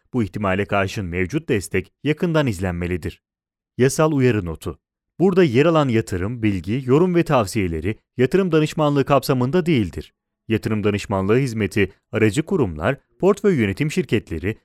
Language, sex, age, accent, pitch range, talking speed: Italian, male, 30-49, Turkish, 105-155 Hz, 125 wpm